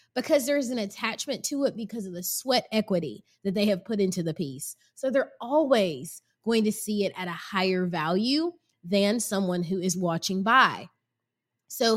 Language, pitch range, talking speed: English, 190-290 Hz, 180 wpm